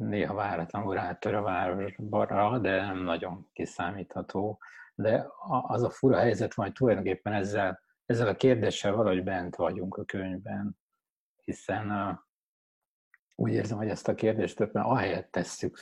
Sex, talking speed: male, 140 wpm